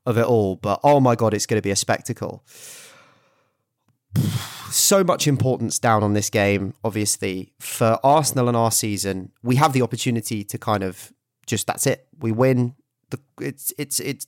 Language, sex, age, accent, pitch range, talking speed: English, male, 30-49, British, 110-135 Hz, 170 wpm